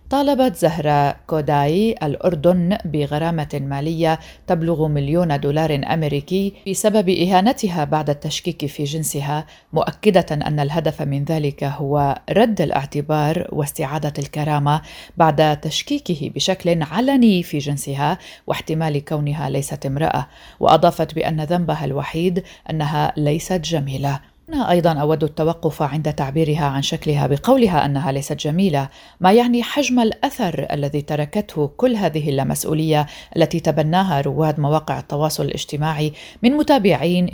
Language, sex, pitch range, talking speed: Arabic, female, 145-180 Hz, 115 wpm